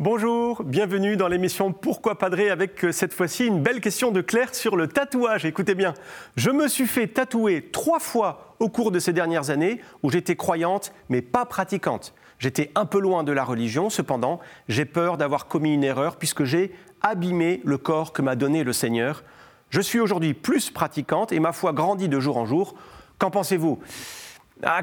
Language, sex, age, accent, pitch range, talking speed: French, male, 40-59, French, 150-210 Hz, 190 wpm